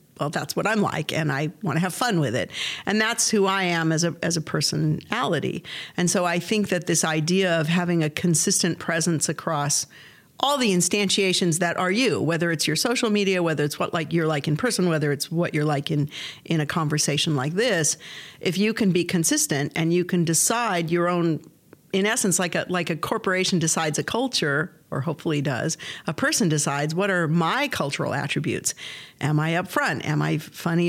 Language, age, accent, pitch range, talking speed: English, 50-69, American, 155-190 Hz, 200 wpm